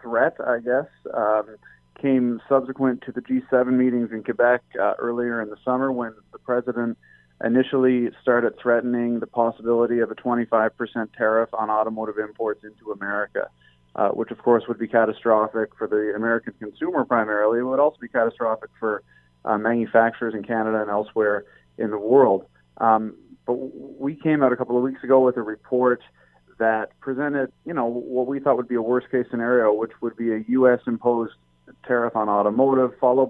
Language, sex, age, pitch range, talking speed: English, male, 30-49, 110-125 Hz, 175 wpm